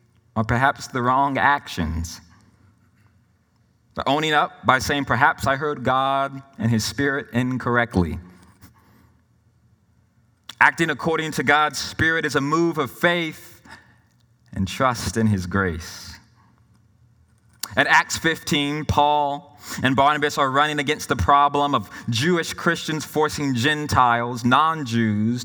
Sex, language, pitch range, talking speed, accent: male, English, 105-140 Hz, 120 wpm, American